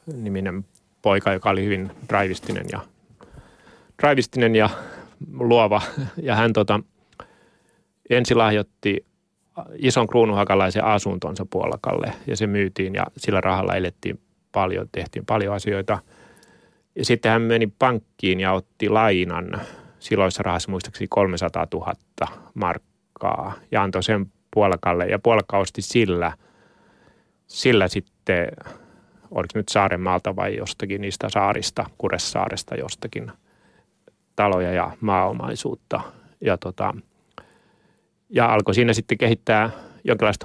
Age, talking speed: 30-49, 105 wpm